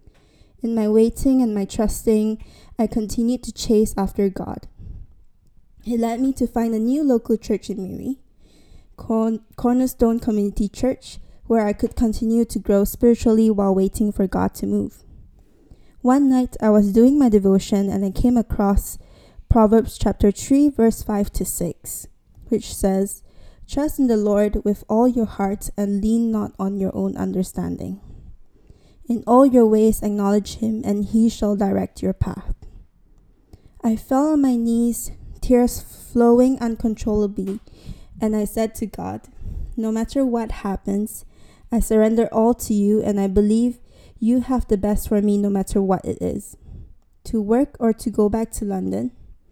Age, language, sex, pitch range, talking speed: 20-39, English, female, 205-235 Hz, 160 wpm